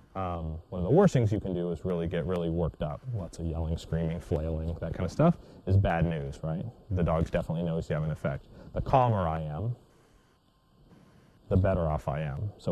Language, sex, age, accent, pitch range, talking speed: English, male, 30-49, American, 85-110 Hz, 215 wpm